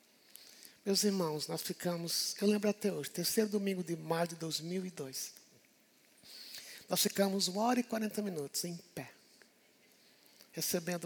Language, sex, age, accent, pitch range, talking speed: Portuguese, male, 60-79, Brazilian, 165-210 Hz, 130 wpm